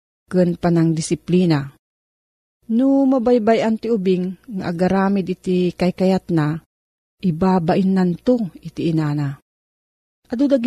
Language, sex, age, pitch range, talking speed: Filipino, female, 40-59, 165-215 Hz, 105 wpm